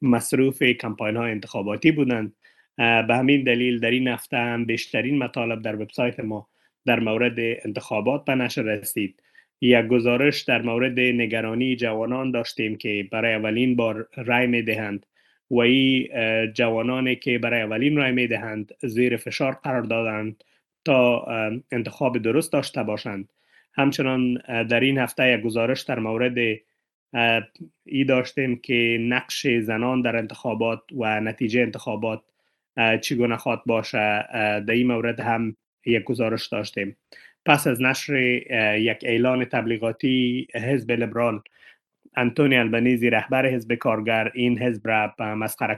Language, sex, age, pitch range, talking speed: Persian, male, 30-49, 115-125 Hz, 125 wpm